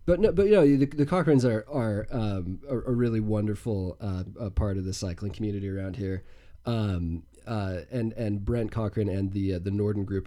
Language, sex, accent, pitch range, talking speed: English, male, American, 95-115 Hz, 200 wpm